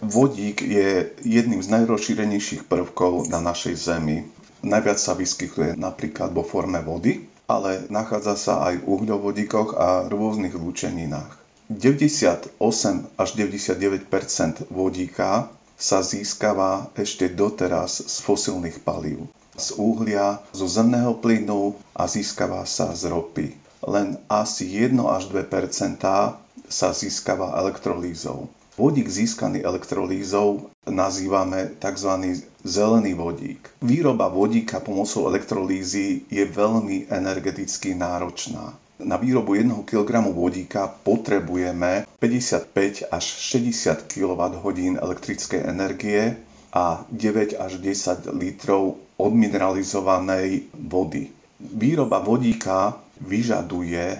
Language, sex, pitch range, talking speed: Slovak, male, 95-105 Hz, 100 wpm